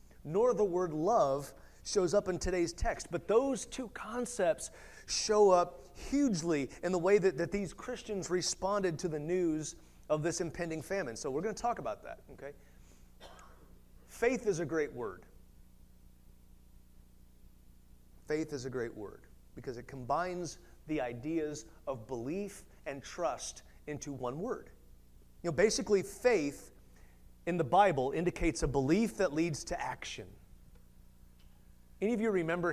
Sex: male